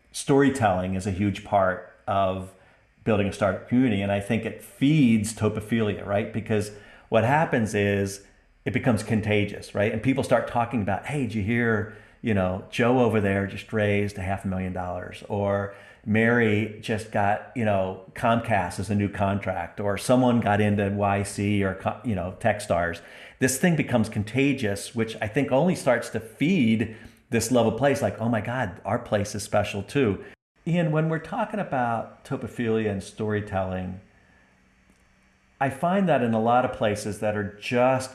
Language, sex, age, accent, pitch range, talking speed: English, male, 40-59, American, 100-120 Hz, 170 wpm